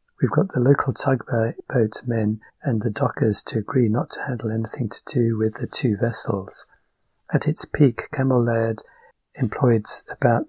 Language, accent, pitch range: English, British, 110-130 Hz